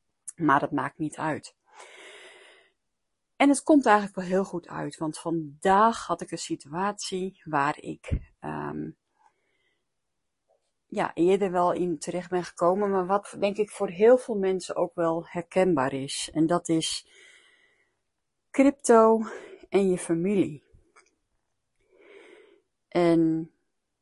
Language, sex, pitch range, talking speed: Dutch, female, 160-205 Hz, 120 wpm